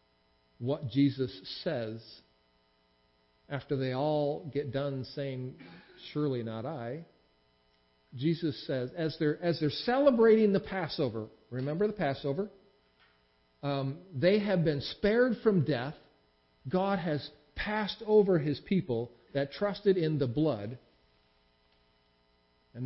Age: 50-69